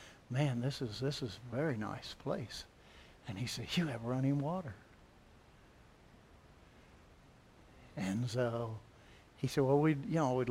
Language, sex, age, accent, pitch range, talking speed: English, male, 60-79, American, 120-150 Hz, 135 wpm